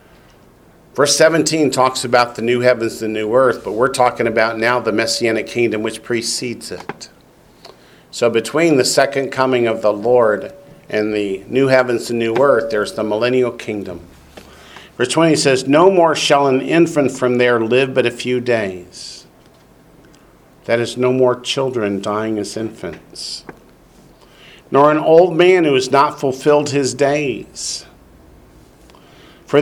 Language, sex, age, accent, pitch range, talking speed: English, male, 50-69, American, 115-140 Hz, 150 wpm